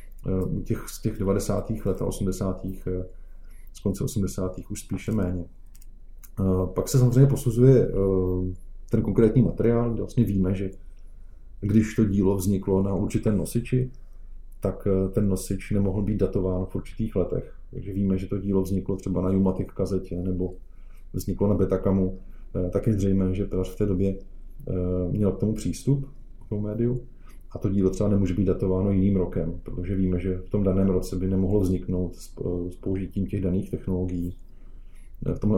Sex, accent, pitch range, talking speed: male, native, 90-100 Hz, 160 wpm